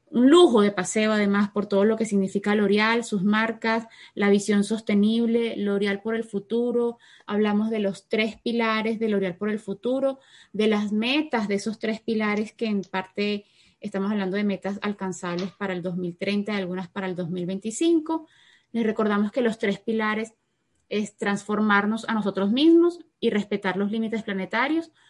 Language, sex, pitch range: Spanish, female, 195-230 Hz